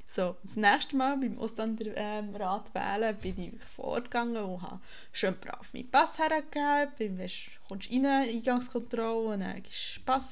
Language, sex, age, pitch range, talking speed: German, female, 20-39, 205-265 Hz, 155 wpm